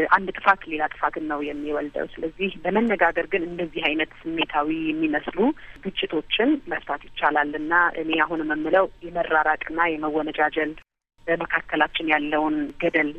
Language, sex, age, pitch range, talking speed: Amharic, female, 30-49, 150-175 Hz, 110 wpm